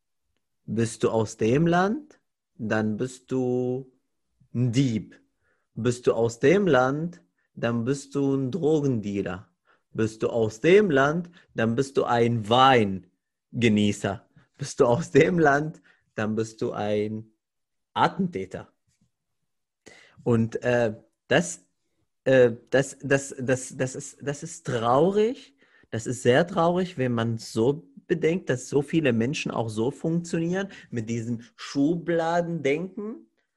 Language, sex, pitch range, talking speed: German, male, 115-145 Hz, 125 wpm